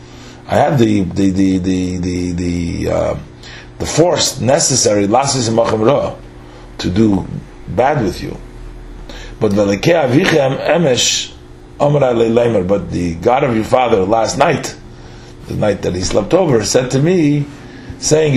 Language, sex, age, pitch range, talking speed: English, male, 40-59, 95-135 Hz, 145 wpm